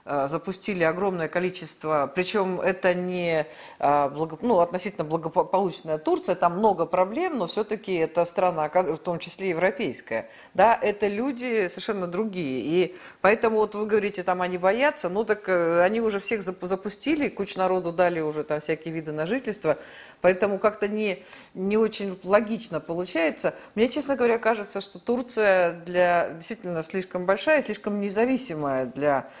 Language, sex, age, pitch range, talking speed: Russian, female, 50-69, 165-215 Hz, 135 wpm